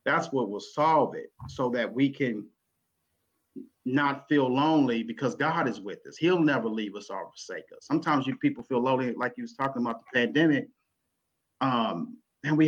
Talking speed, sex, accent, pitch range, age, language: 185 wpm, male, American, 125-155 Hz, 40-59, English